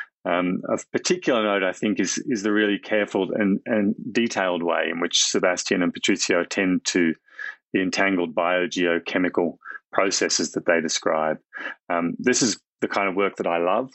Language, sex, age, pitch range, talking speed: English, male, 30-49, 90-105 Hz, 170 wpm